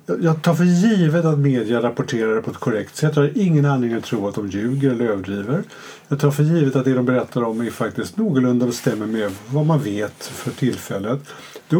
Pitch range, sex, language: 125-160 Hz, male, Swedish